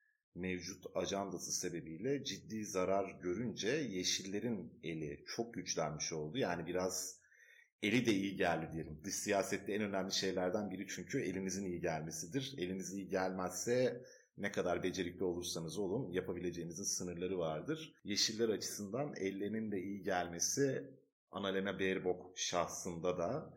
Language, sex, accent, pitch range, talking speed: Turkish, male, native, 90-125 Hz, 125 wpm